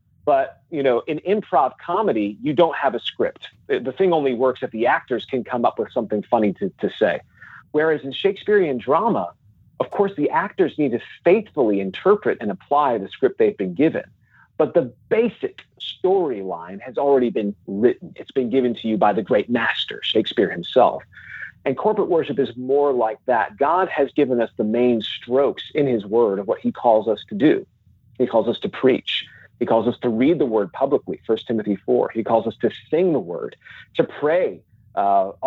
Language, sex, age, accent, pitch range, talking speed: English, male, 40-59, American, 115-160 Hz, 195 wpm